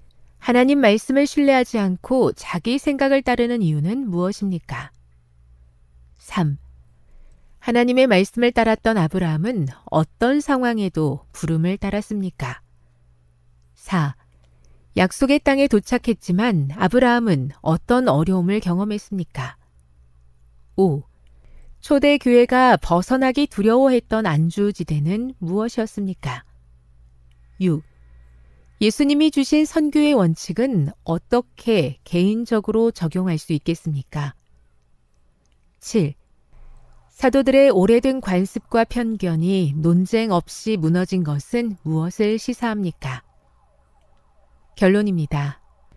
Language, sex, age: Korean, female, 40-59